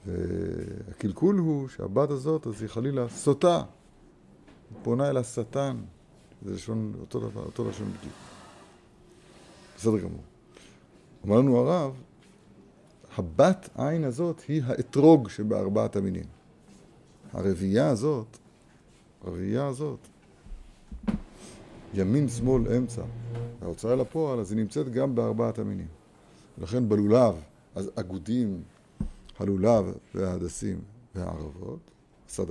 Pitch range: 95-130 Hz